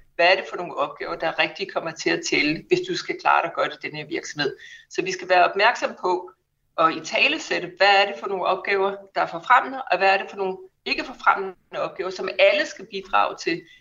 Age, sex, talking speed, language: 60-79, female, 245 wpm, Danish